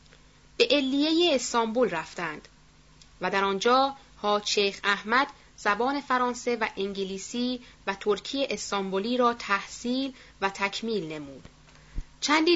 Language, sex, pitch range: Persian, female, 200-250 Hz